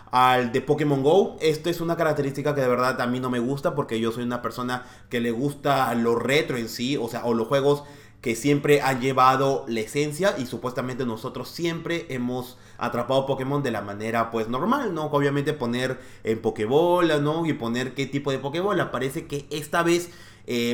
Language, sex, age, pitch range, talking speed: English, male, 30-49, 120-160 Hz, 195 wpm